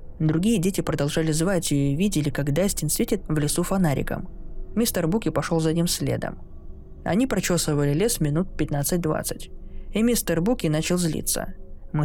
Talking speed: 150 wpm